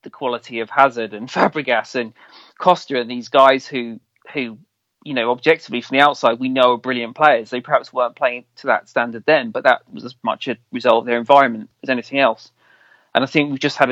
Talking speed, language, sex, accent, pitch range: 225 wpm, English, male, British, 120-140 Hz